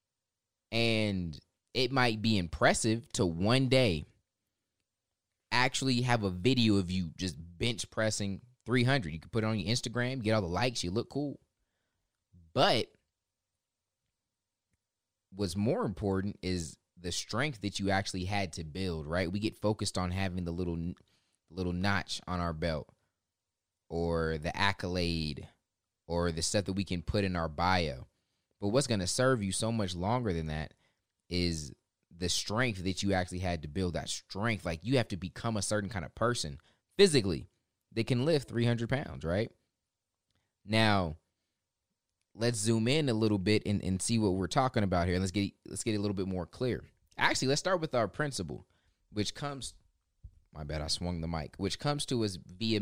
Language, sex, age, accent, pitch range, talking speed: English, male, 20-39, American, 90-115 Hz, 175 wpm